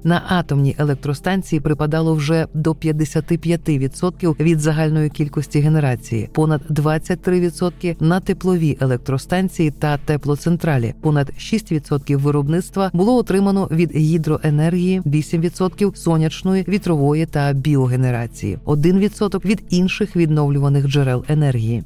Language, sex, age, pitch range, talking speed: Ukrainian, female, 40-59, 145-180 Hz, 105 wpm